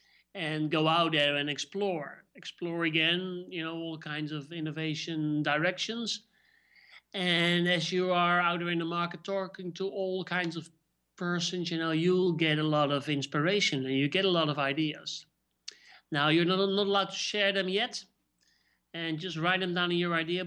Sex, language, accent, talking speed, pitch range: male, English, Dutch, 180 wpm, 155-190 Hz